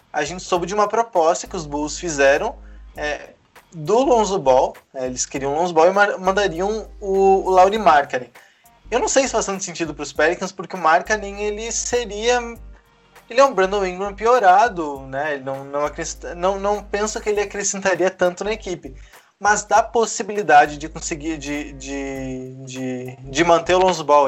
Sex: male